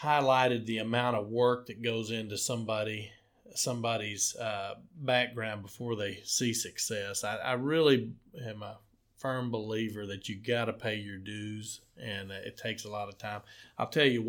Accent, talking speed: American, 170 wpm